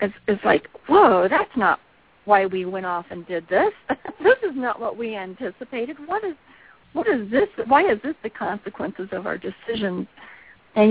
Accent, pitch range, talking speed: American, 180-220 Hz, 180 wpm